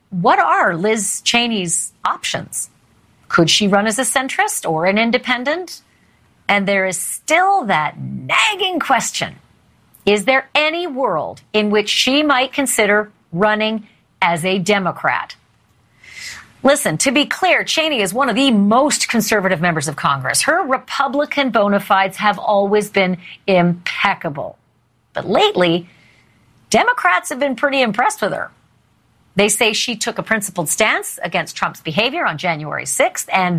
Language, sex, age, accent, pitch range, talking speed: English, female, 40-59, American, 185-270 Hz, 140 wpm